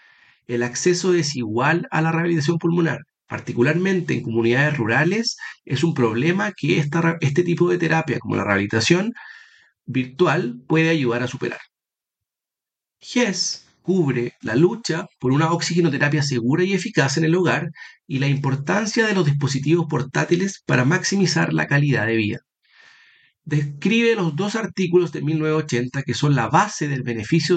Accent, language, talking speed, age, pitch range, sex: Argentinian, Spanish, 145 wpm, 40-59, 130-175 Hz, male